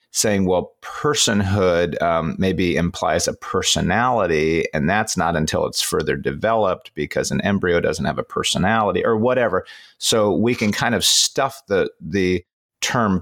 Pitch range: 90-105 Hz